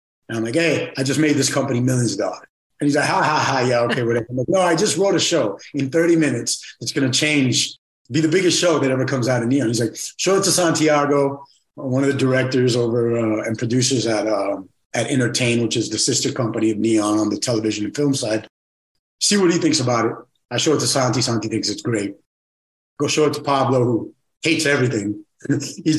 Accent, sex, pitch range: American, male, 120-150 Hz